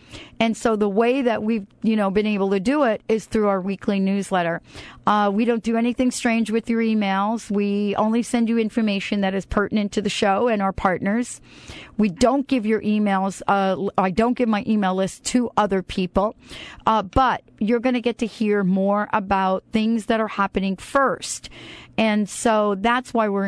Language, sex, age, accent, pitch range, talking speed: English, female, 40-59, American, 185-225 Hz, 195 wpm